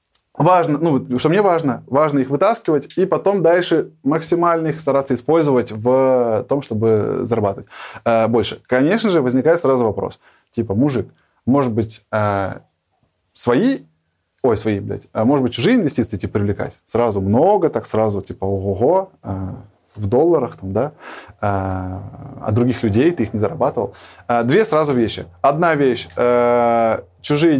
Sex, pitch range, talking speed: male, 110-155 Hz, 135 wpm